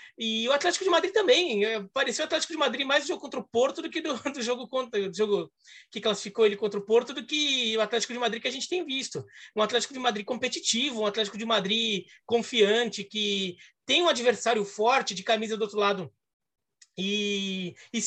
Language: Portuguese